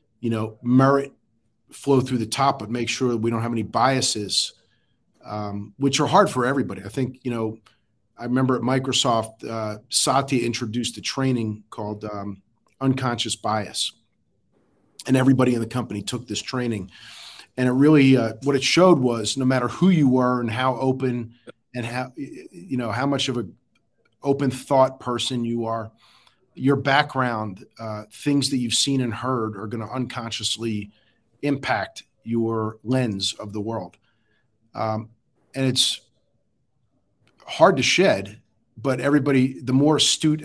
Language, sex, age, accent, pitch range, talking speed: English, male, 40-59, American, 110-130 Hz, 155 wpm